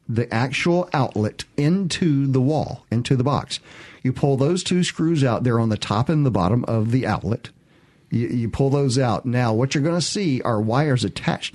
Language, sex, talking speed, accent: English, male, 205 wpm, American